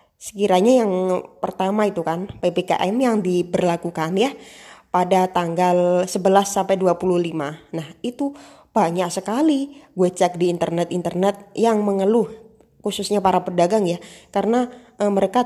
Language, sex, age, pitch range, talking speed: Indonesian, female, 20-39, 175-230 Hz, 120 wpm